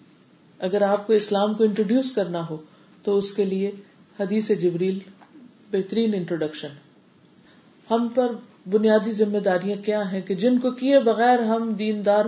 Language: Urdu